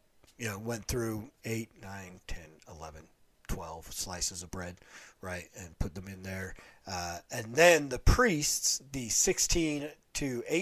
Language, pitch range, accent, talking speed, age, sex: English, 110-145 Hz, American, 145 wpm, 40-59, male